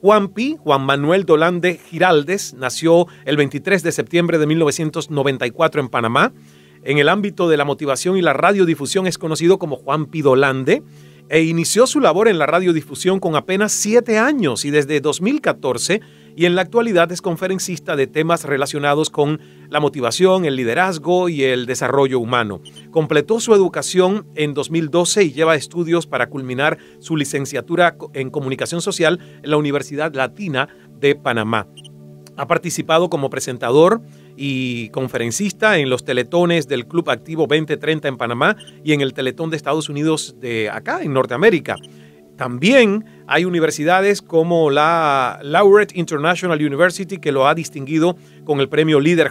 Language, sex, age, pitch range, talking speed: Spanish, male, 40-59, 130-175 Hz, 150 wpm